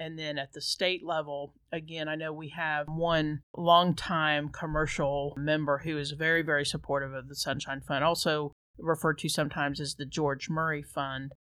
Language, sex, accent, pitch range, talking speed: English, male, American, 145-165 Hz, 170 wpm